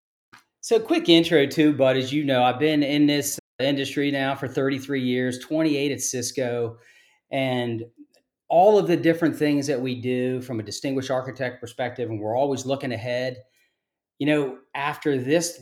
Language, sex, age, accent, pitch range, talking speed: English, male, 40-59, American, 125-150 Hz, 165 wpm